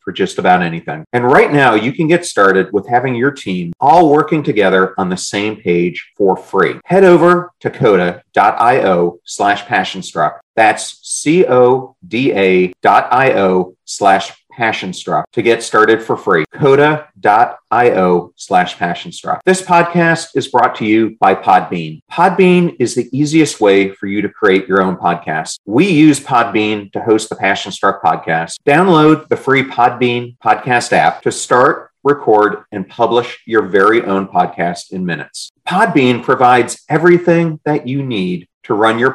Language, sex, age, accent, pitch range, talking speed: English, male, 40-59, American, 95-150 Hz, 160 wpm